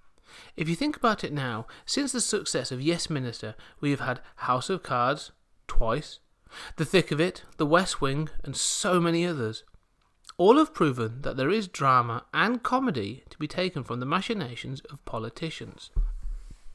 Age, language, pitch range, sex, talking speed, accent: 30-49, English, 120-170 Hz, male, 170 wpm, British